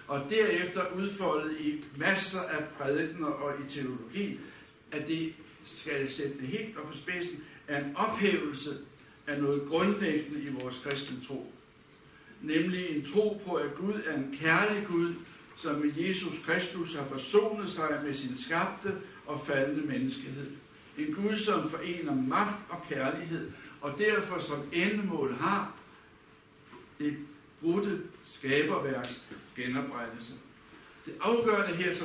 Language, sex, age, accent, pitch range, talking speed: Danish, male, 60-79, native, 145-190 Hz, 130 wpm